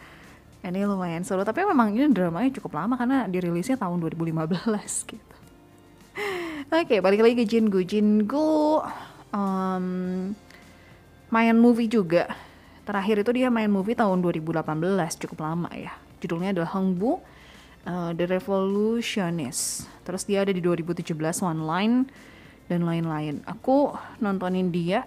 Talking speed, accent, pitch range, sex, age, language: 125 wpm, native, 175-225 Hz, female, 20-39, Indonesian